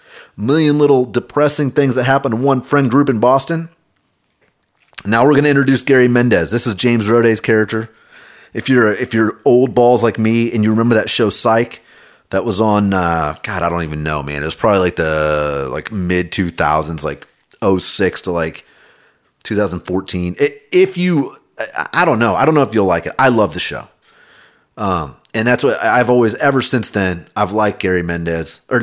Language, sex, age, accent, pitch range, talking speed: English, male, 30-49, American, 95-135 Hz, 190 wpm